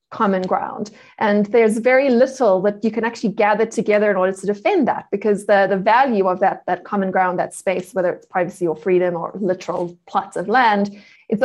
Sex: female